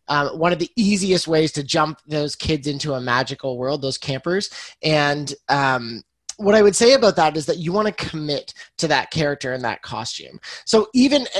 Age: 20-39